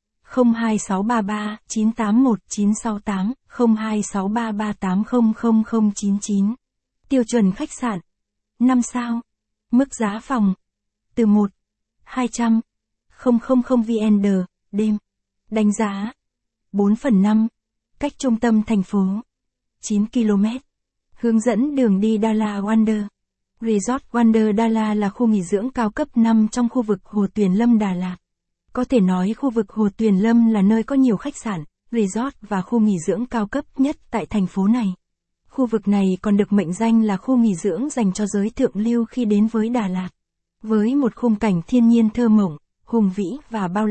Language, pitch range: Vietnamese, 205-235 Hz